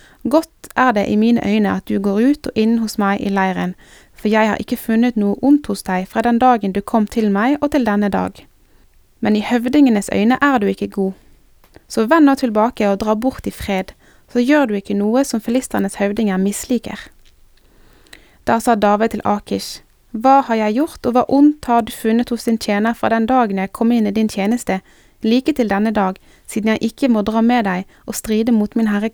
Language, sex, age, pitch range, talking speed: Danish, female, 20-39, 205-245 Hz, 215 wpm